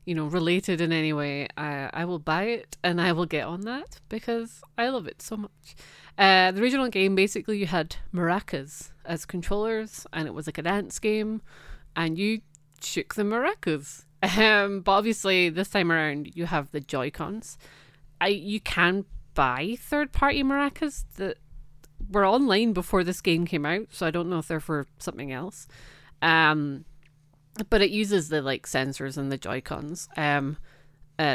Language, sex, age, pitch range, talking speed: English, female, 30-49, 150-195 Hz, 170 wpm